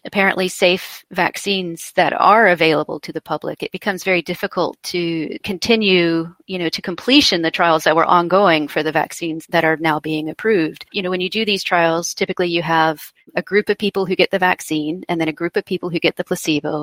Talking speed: 215 wpm